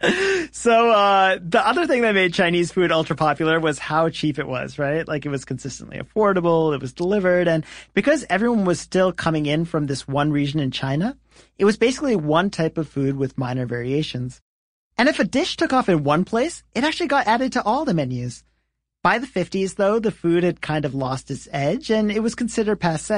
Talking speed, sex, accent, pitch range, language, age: 210 wpm, male, American, 155-220 Hz, English, 40-59